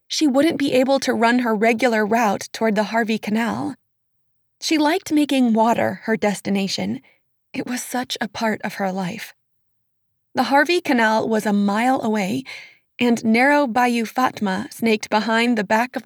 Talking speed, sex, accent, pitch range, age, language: 160 wpm, female, American, 215-260 Hz, 20-39, English